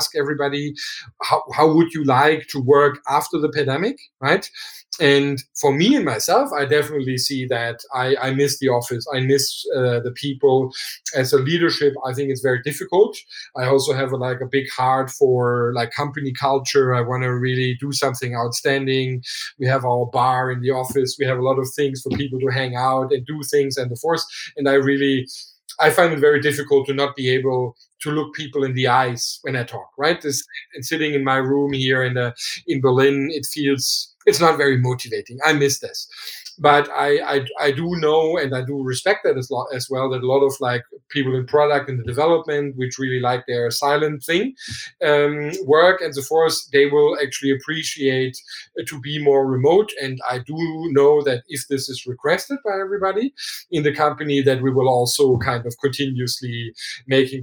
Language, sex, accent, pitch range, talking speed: English, male, German, 130-150 Hz, 200 wpm